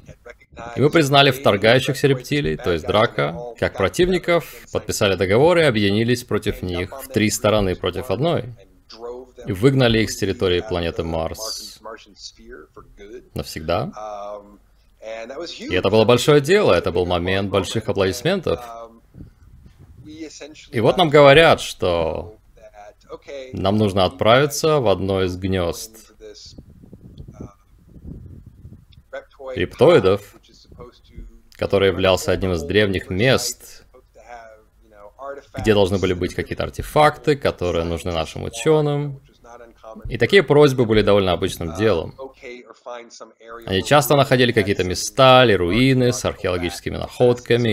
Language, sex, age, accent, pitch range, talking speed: Russian, male, 30-49, native, 95-125 Hz, 105 wpm